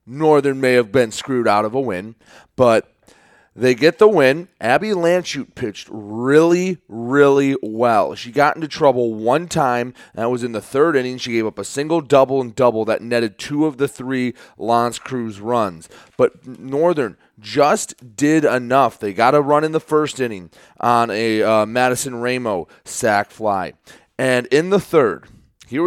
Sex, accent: male, American